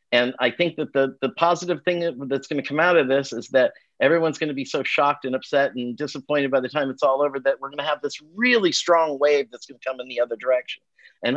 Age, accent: 50-69, American